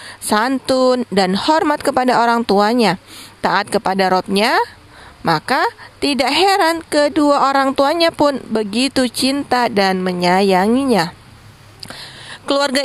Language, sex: Indonesian, female